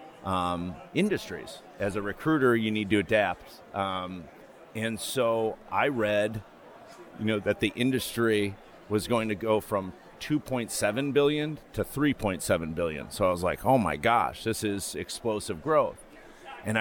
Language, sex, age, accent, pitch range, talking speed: English, male, 40-59, American, 95-120 Hz, 145 wpm